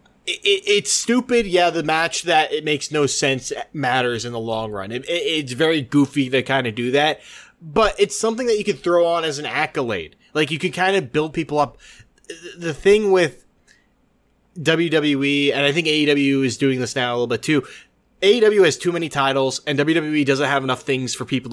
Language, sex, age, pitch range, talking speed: English, male, 20-39, 135-180 Hz, 200 wpm